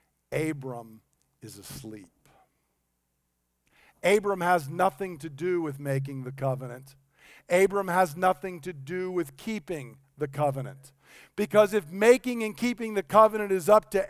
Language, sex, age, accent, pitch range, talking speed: English, male, 50-69, American, 160-220 Hz, 130 wpm